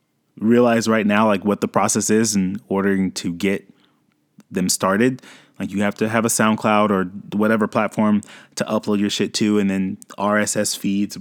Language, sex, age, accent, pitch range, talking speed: English, male, 20-39, American, 105-170 Hz, 175 wpm